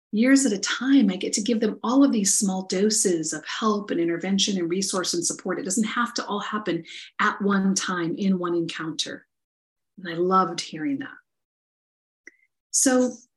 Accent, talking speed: American, 180 wpm